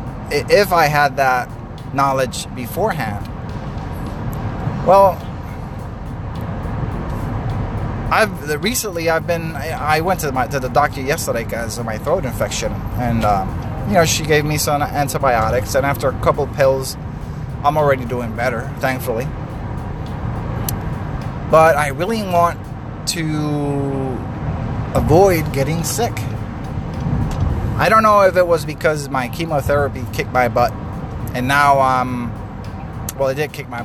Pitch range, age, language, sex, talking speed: 115-145 Hz, 20-39, English, male, 125 wpm